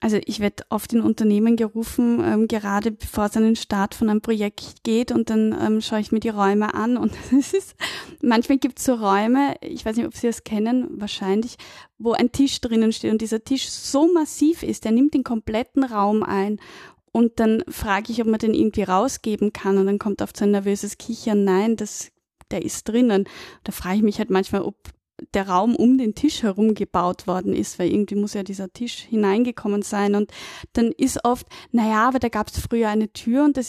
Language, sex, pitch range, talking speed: German, female, 210-245 Hz, 215 wpm